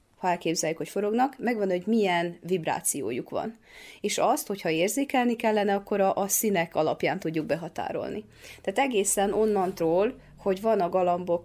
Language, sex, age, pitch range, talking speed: Hungarian, female, 30-49, 180-225 Hz, 140 wpm